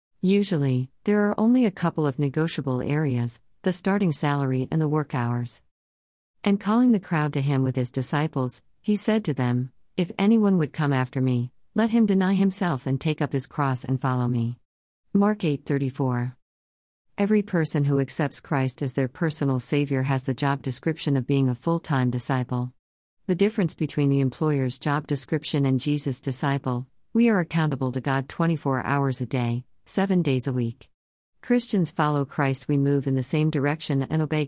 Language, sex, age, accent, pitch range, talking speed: English, female, 50-69, American, 130-165 Hz, 175 wpm